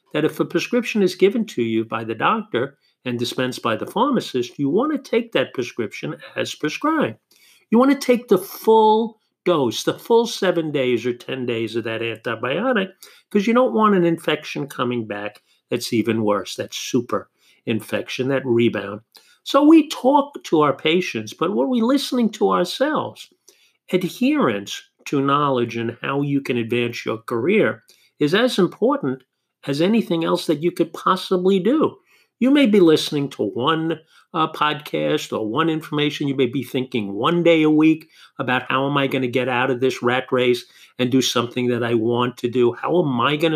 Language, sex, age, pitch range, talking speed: English, male, 50-69, 125-205 Hz, 180 wpm